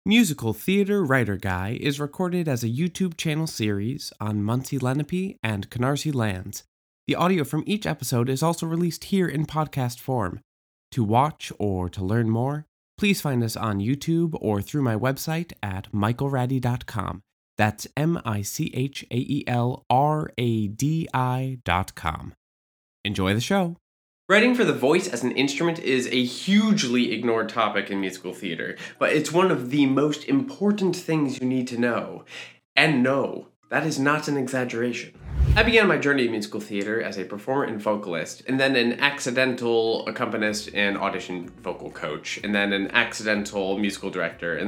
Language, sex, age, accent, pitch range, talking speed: English, male, 20-39, American, 110-160 Hz, 155 wpm